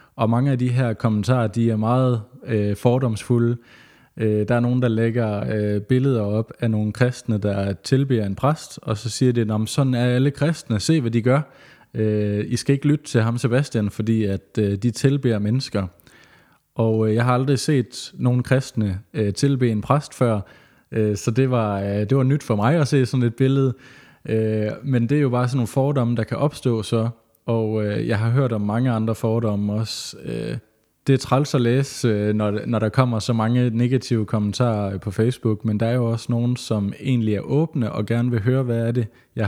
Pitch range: 110-125 Hz